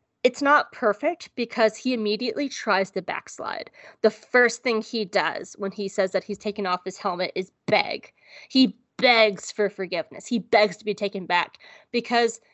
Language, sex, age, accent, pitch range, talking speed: English, female, 20-39, American, 195-240 Hz, 170 wpm